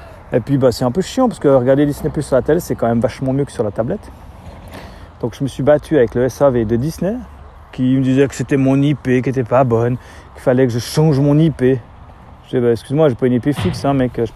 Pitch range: 115-150 Hz